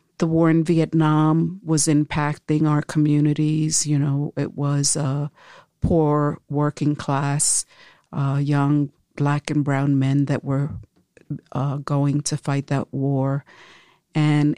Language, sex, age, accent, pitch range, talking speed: English, female, 50-69, American, 145-155 Hz, 130 wpm